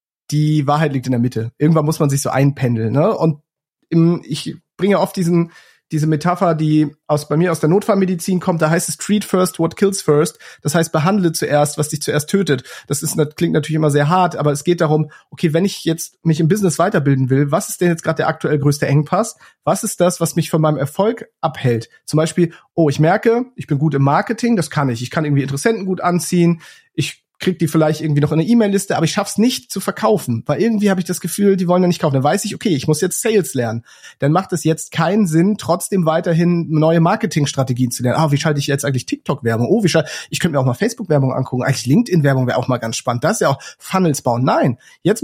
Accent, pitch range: German, 145-185 Hz